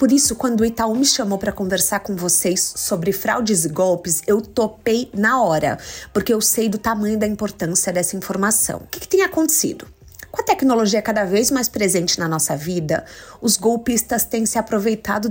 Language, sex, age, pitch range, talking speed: Portuguese, female, 30-49, 205-260 Hz, 190 wpm